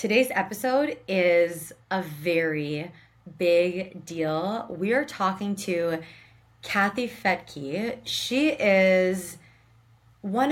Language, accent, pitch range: English, American, 170-205 Hz